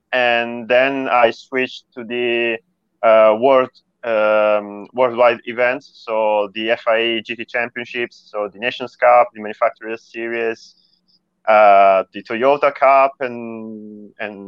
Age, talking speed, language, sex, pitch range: 30-49, 120 wpm, English, male, 115-135 Hz